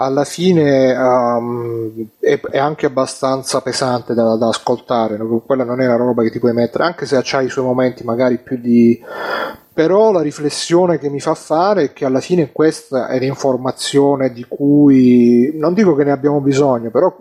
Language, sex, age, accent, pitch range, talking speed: Italian, male, 30-49, native, 125-145 Hz, 180 wpm